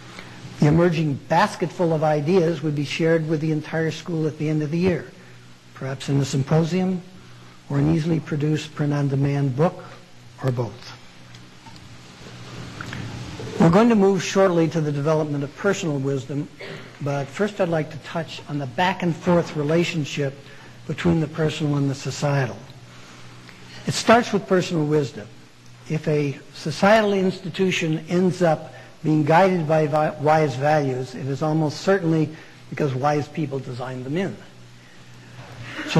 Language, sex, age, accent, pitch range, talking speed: English, male, 60-79, American, 135-170 Hz, 140 wpm